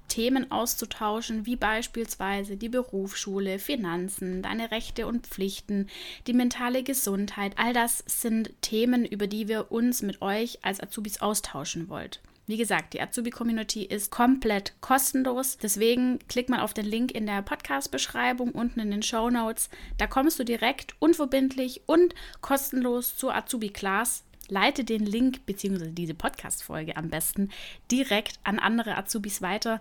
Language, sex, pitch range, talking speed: German, female, 195-245 Hz, 145 wpm